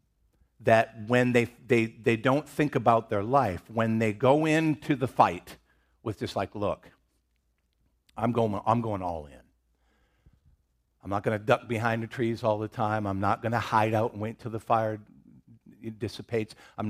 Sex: male